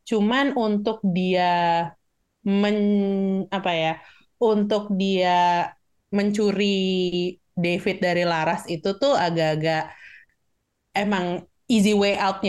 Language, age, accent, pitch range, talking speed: Indonesian, 20-39, native, 175-215 Hz, 90 wpm